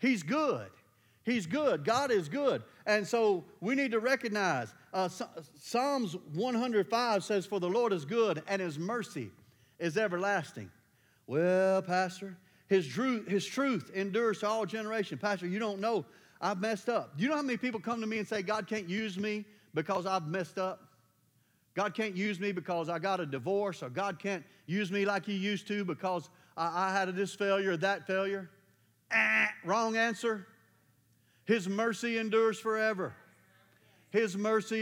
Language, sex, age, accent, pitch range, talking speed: English, male, 40-59, American, 180-220 Hz, 170 wpm